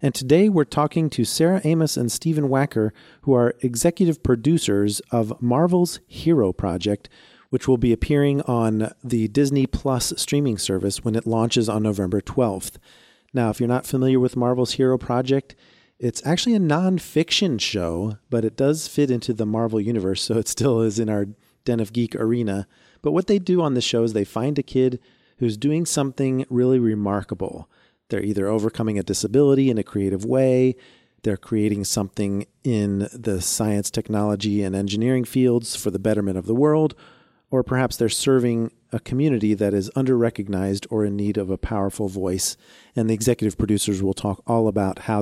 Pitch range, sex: 105-135 Hz, male